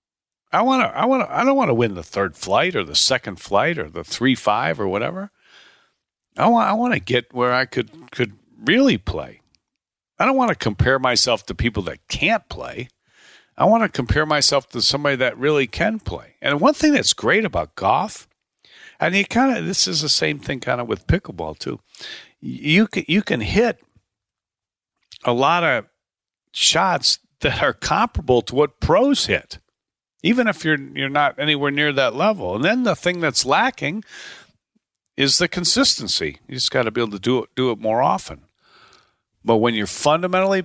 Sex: male